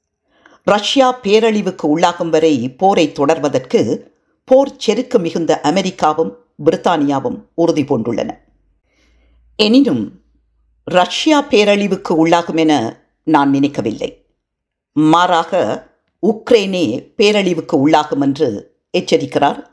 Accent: native